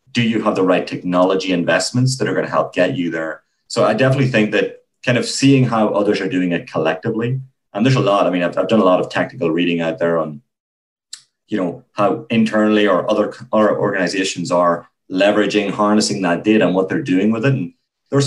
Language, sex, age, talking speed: English, male, 30-49, 220 wpm